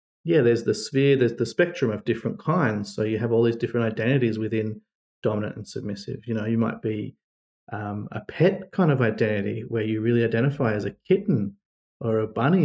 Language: English